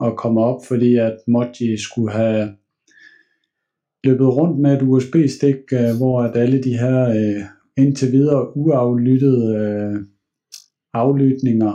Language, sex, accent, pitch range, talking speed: Danish, male, native, 110-130 Hz, 130 wpm